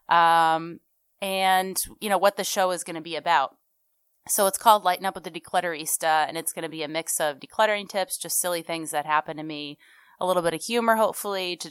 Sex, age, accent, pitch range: female, 30-49, American, 155-185 Hz